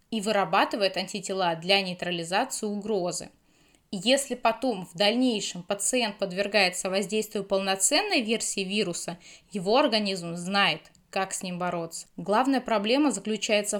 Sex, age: female, 20-39